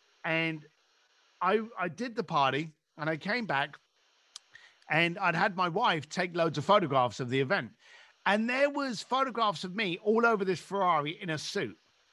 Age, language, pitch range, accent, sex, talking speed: 50-69, English, 155-220 Hz, British, male, 175 wpm